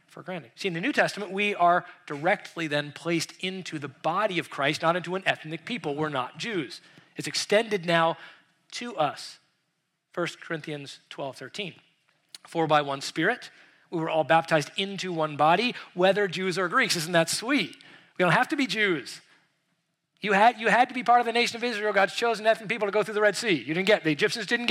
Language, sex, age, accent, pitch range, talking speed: English, male, 40-59, American, 165-220 Hz, 210 wpm